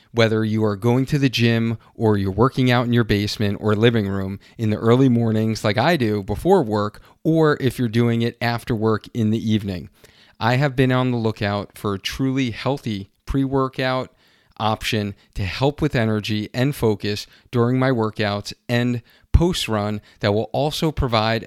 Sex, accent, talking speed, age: male, American, 180 wpm, 40-59